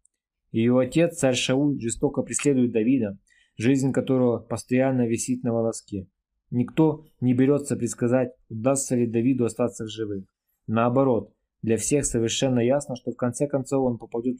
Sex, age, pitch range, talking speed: male, 20-39, 110-135 Hz, 140 wpm